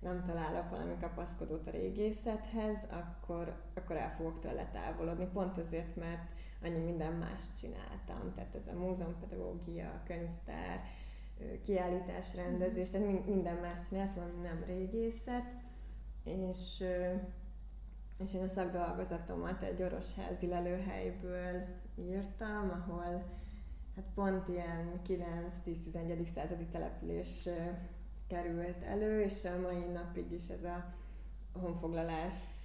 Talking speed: 105 wpm